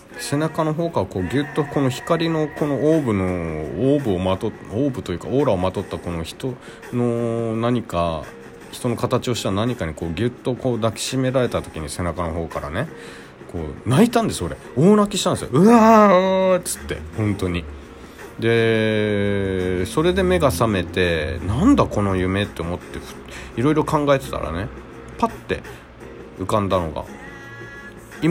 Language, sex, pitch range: Japanese, male, 85-135 Hz